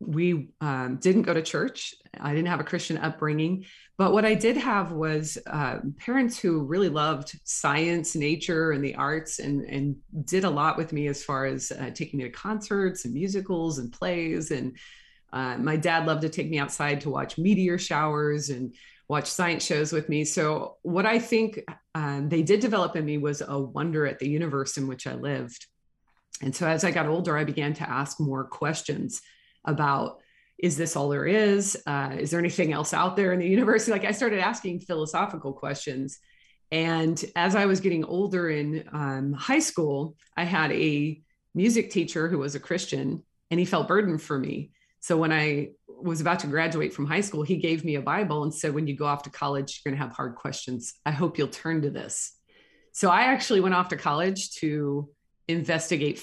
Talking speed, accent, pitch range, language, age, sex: 200 wpm, American, 145-180 Hz, English, 30-49, female